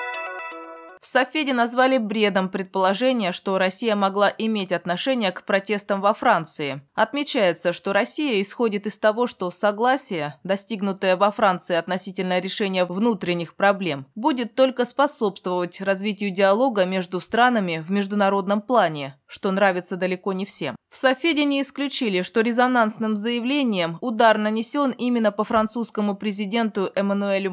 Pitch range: 185-235 Hz